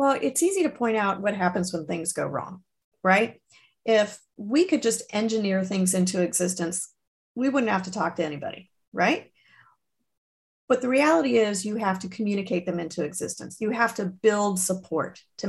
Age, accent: 40-59, American